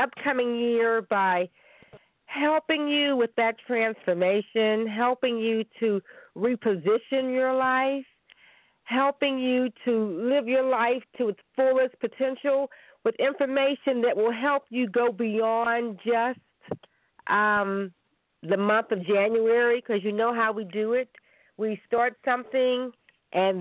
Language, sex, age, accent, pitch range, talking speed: English, female, 50-69, American, 190-250 Hz, 125 wpm